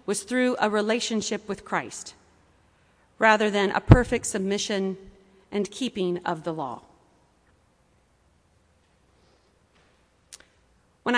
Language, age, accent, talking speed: English, 40-59, American, 90 wpm